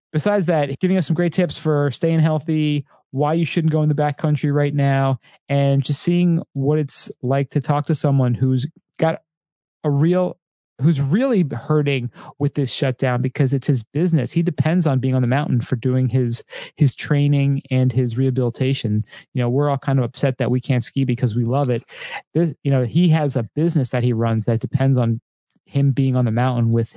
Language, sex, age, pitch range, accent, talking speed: English, male, 30-49, 130-165 Hz, American, 205 wpm